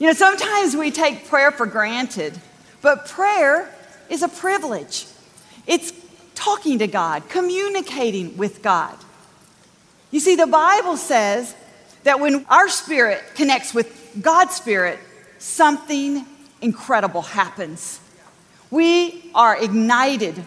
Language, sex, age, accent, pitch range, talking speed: English, female, 40-59, American, 240-355 Hz, 115 wpm